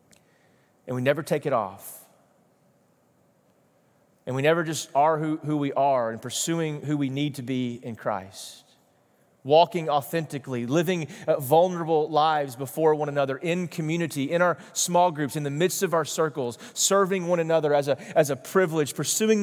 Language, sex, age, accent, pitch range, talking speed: English, male, 30-49, American, 135-175 Hz, 160 wpm